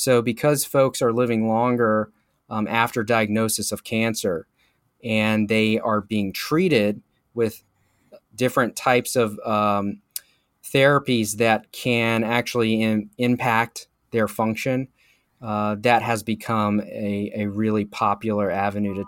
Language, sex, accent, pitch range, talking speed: English, male, American, 105-120 Hz, 125 wpm